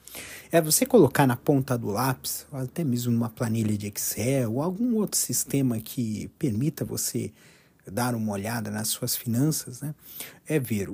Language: Portuguese